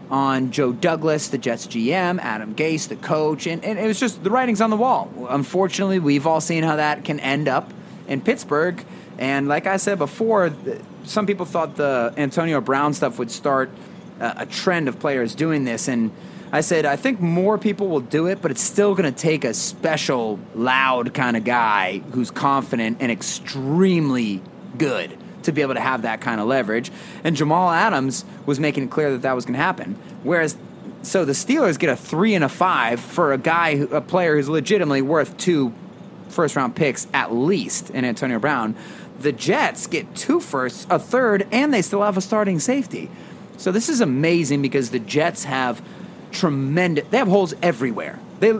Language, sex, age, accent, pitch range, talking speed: English, male, 30-49, American, 140-200 Hz, 190 wpm